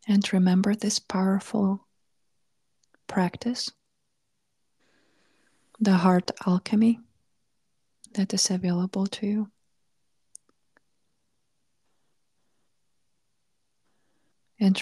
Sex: female